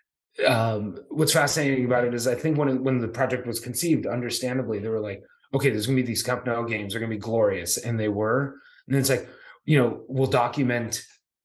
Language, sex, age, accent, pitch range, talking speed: English, male, 30-49, American, 110-140 Hz, 225 wpm